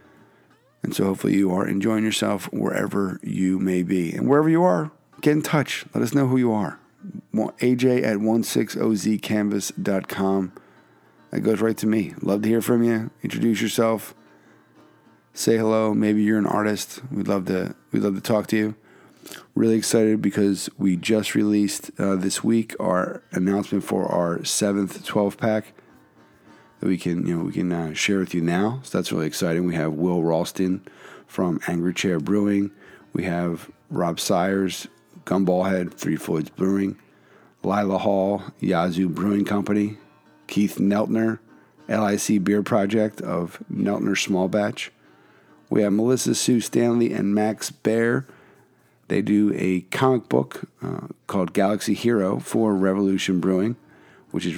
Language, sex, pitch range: English, male, 95-110 Hz